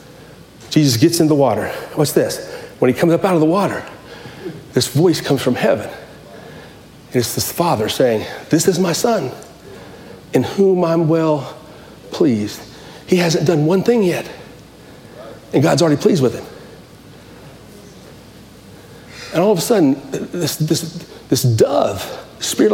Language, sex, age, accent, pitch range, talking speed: English, male, 40-59, American, 140-195 Hz, 150 wpm